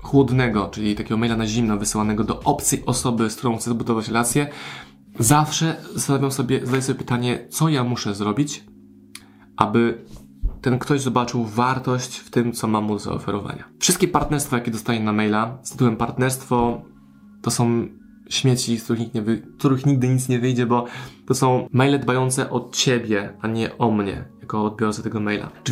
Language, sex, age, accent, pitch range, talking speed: Polish, male, 20-39, native, 110-125 Hz, 165 wpm